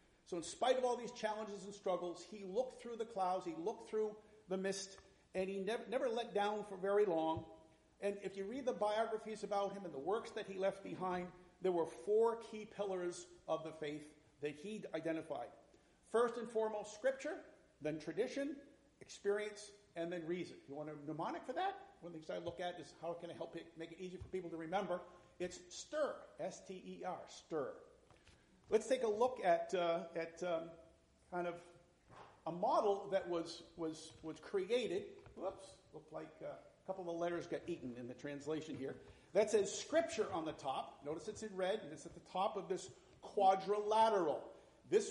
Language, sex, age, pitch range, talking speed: English, male, 50-69, 170-220 Hz, 195 wpm